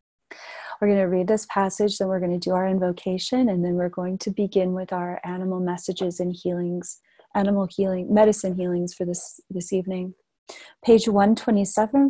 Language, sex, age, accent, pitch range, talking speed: English, female, 30-49, American, 185-220 Hz, 175 wpm